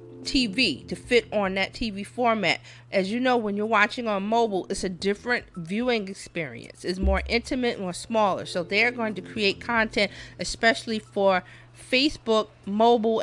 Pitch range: 190-245 Hz